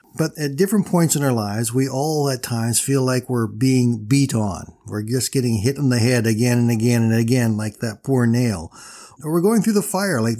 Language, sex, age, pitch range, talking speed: English, male, 50-69, 125-165 Hz, 230 wpm